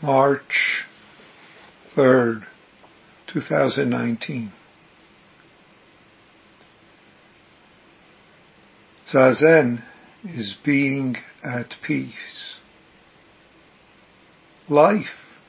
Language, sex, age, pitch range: English, male, 50-69, 120-145 Hz